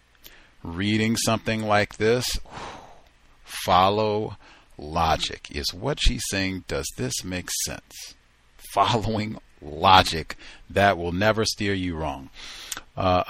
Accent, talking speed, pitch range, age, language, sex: American, 105 wpm, 80-120 Hz, 50-69, English, male